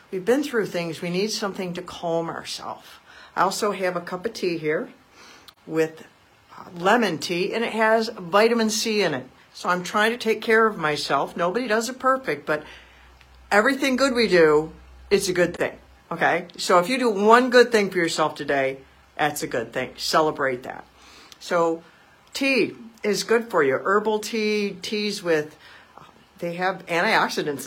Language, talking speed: English, 170 wpm